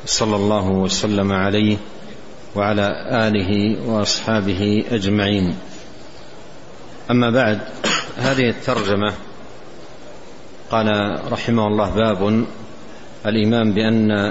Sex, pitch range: male, 105-120 Hz